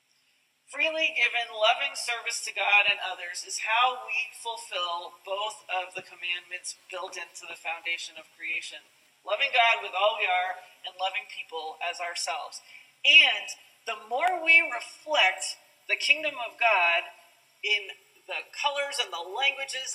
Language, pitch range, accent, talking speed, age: English, 185-255 Hz, American, 145 wpm, 40-59